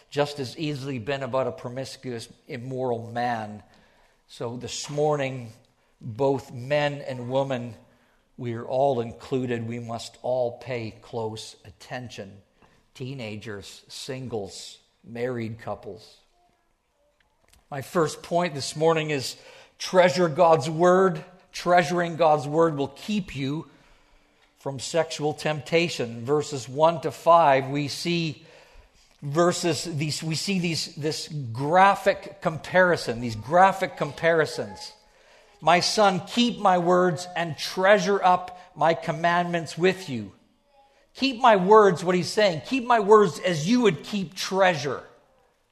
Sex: male